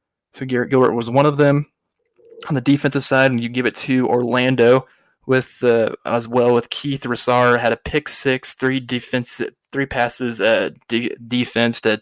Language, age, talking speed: English, 20-39, 180 wpm